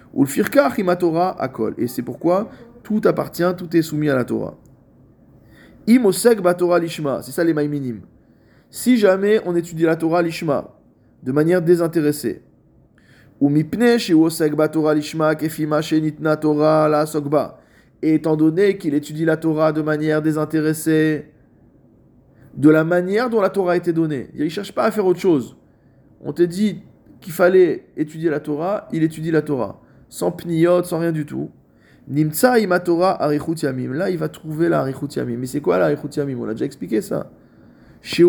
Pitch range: 145-175 Hz